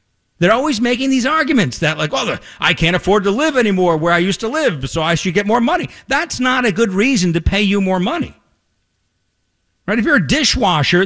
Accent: American